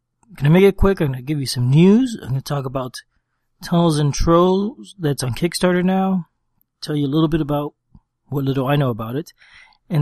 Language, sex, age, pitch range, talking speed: English, male, 30-49, 130-160 Hz, 210 wpm